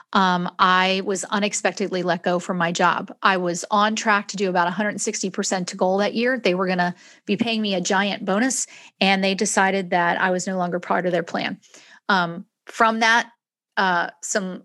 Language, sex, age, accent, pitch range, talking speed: English, female, 40-59, American, 185-220 Hz, 195 wpm